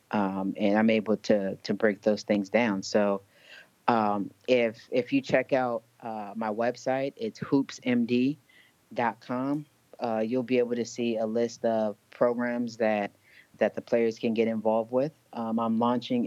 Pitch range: 105-120 Hz